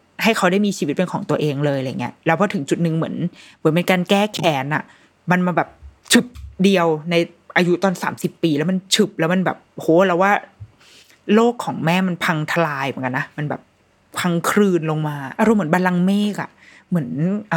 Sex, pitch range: female, 165-205 Hz